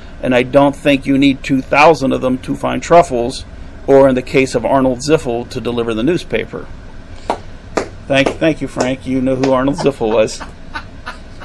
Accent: American